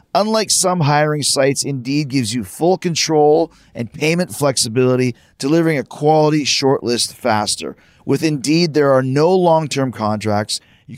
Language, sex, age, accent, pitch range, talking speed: English, male, 30-49, American, 125-155 Hz, 135 wpm